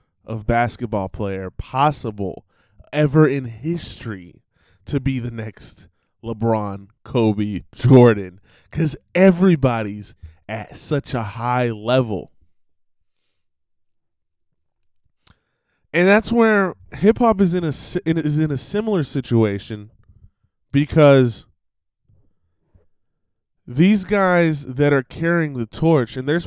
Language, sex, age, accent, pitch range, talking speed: English, male, 20-39, American, 105-140 Hz, 90 wpm